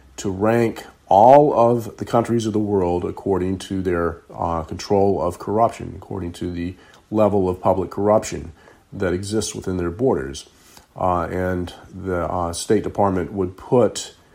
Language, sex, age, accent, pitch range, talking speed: English, male, 40-59, American, 90-105 Hz, 150 wpm